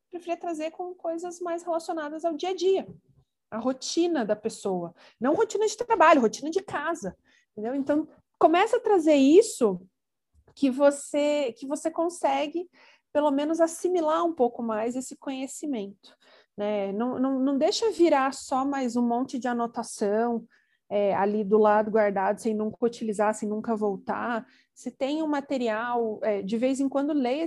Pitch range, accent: 225-310 Hz, Brazilian